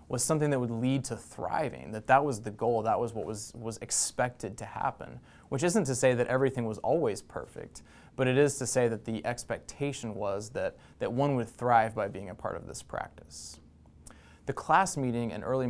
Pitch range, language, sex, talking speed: 105-125 Hz, English, male, 210 wpm